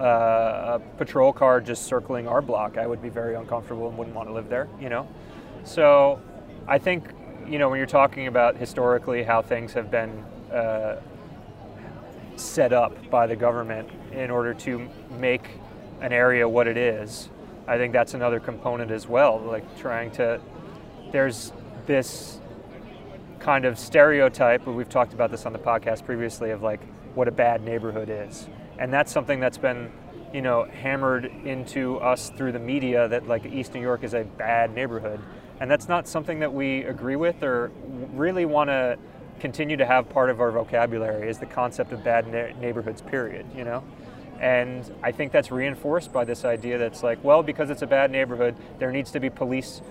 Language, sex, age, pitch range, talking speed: English, male, 20-39, 115-135 Hz, 180 wpm